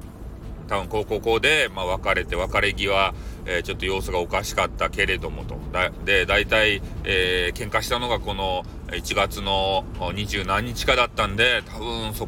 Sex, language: male, Japanese